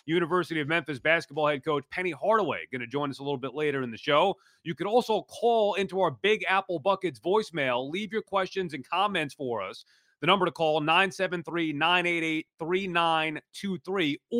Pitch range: 140-180 Hz